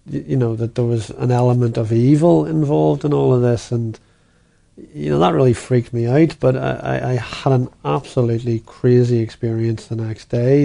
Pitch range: 115-130 Hz